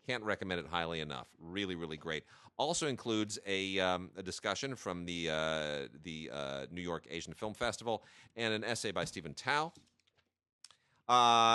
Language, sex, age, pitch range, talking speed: English, male, 30-49, 90-120 Hz, 160 wpm